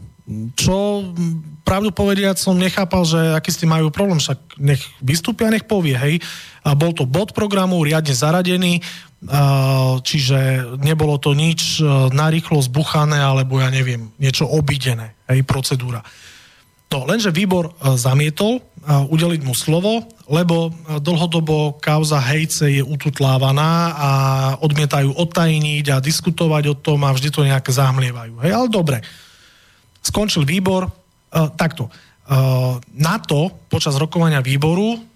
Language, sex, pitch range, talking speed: Slovak, male, 140-175 Hz, 125 wpm